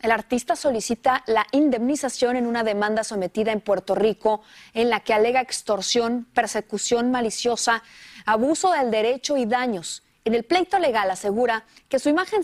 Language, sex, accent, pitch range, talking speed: Spanish, female, Mexican, 215-290 Hz, 155 wpm